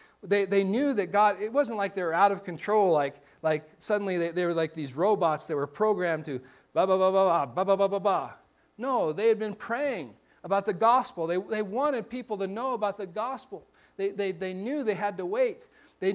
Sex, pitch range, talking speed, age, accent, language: male, 190-255 Hz, 225 wpm, 40-59, American, English